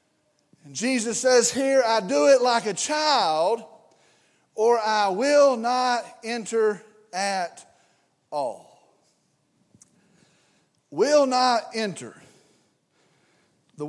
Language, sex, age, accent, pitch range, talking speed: English, male, 40-59, American, 220-275 Hz, 90 wpm